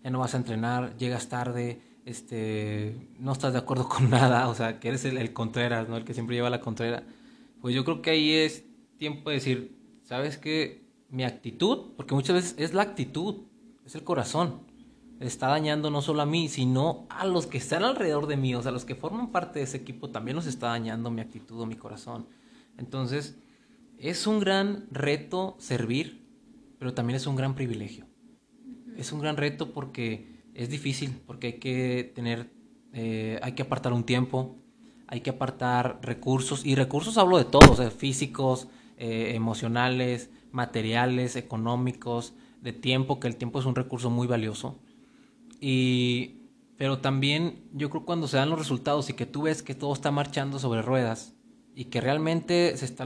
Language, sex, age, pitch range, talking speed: Spanish, male, 20-39, 125-160 Hz, 180 wpm